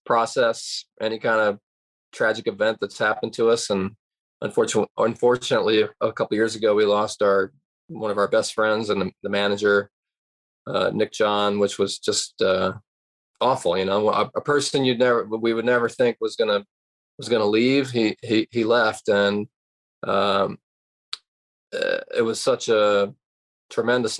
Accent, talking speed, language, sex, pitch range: American, 160 wpm, English, male, 105-130 Hz